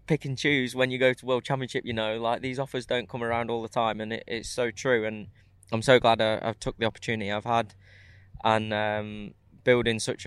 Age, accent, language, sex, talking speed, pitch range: 20-39, British, English, male, 220 wpm, 105-120 Hz